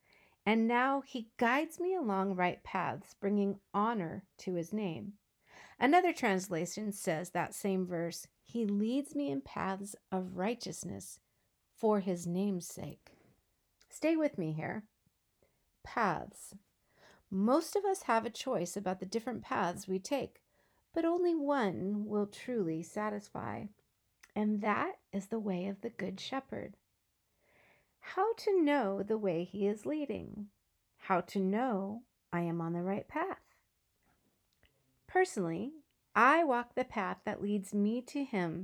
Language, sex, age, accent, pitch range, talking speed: English, female, 40-59, American, 185-245 Hz, 140 wpm